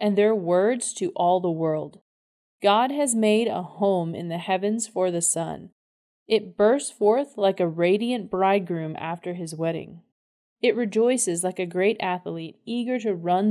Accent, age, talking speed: American, 30-49, 165 wpm